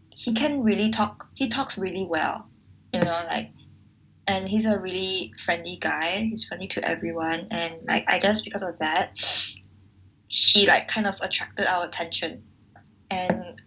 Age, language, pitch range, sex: 10-29, English, 165-220 Hz, female